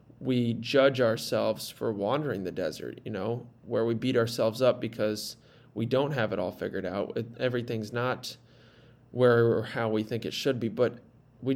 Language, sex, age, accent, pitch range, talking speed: English, male, 20-39, American, 115-135 Hz, 175 wpm